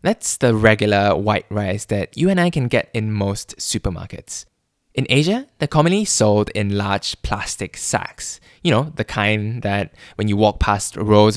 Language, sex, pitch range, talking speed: English, male, 100-135 Hz, 175 wpm